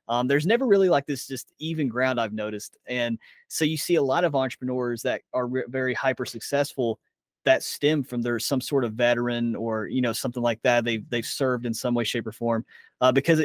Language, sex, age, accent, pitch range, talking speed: English, male, 30-49, American, 115-135 Hz, 225 wpm